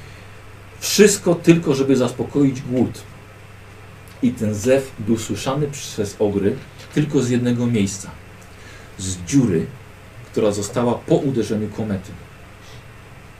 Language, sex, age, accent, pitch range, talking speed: Polish, male, 40-59, native, 105-135 Hz, 105 wpm